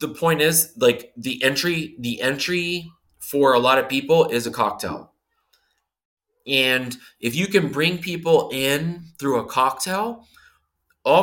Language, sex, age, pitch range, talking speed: English, male, 20-39, 115-165 Hz, 145 wpm